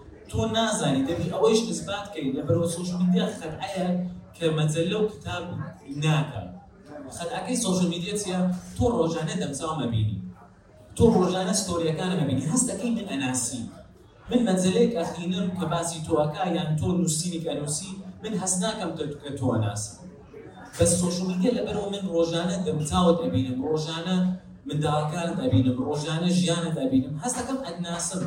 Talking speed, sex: 115 wpm, male